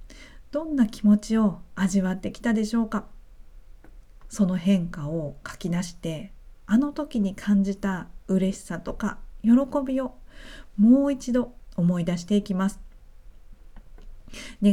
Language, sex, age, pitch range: Japanese, female, 50-69, 175-225 Hz